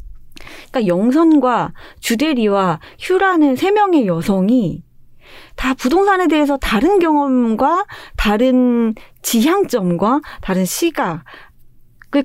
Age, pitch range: 30-49, 165-270 Hz